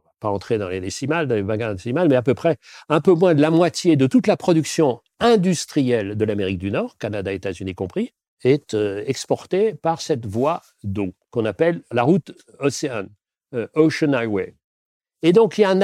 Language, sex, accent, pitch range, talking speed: French, male, French, 110-175 Hz, 195 wpm